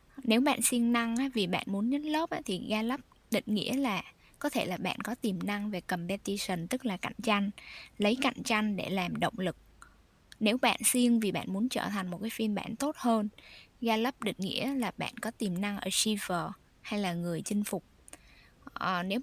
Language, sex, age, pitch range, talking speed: Vietnamese, female, 10-29, 195-245 Hz, 205 wpm